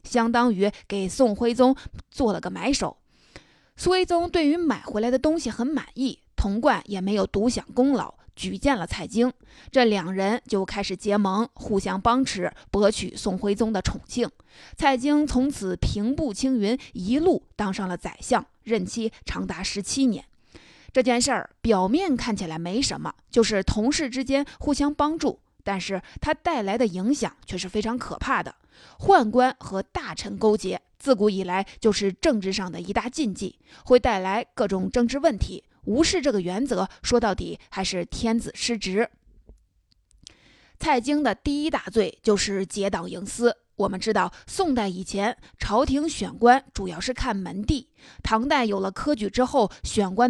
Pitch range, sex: 200-260 Hz, female